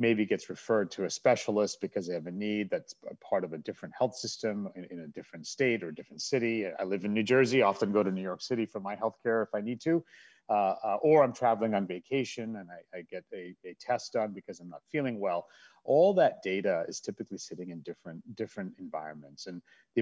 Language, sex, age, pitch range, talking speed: English, male, 40-59, 90-115 Hz, 235 wpm